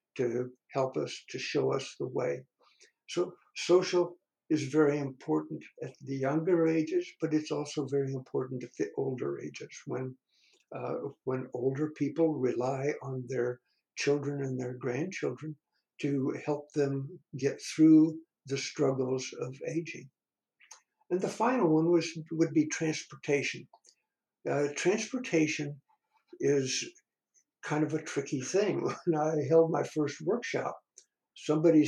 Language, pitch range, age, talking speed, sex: English, 140-170 Hz, 60-79, 130 wpm, male